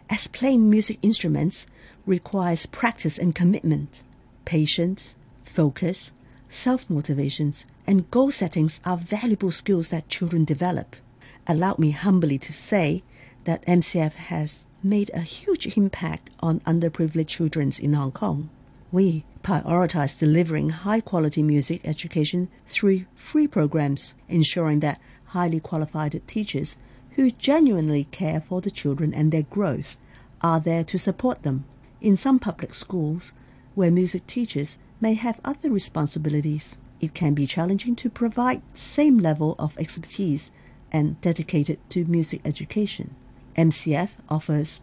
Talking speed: 125 wpm